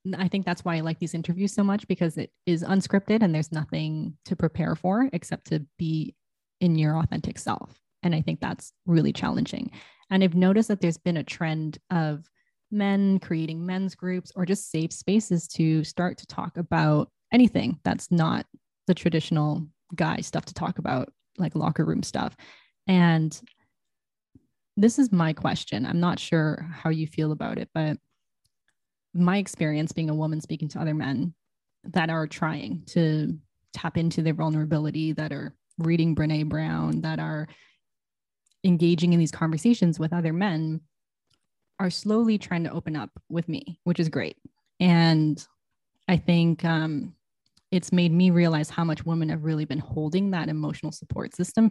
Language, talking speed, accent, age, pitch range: English, 165 wpm, American, 20-39, 155-185 Hz